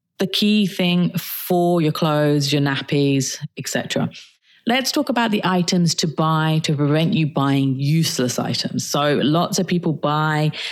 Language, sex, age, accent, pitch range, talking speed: English, female, 30-49, British, 140-185 Hz, 150 wpm